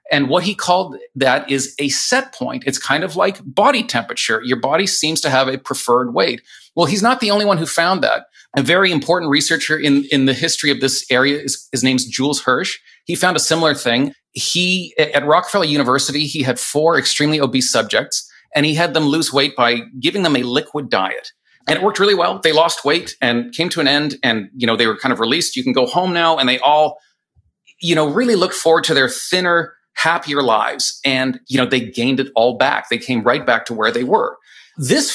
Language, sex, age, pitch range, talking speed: English, male, 40-59, 135-175 Hz, 225 wpm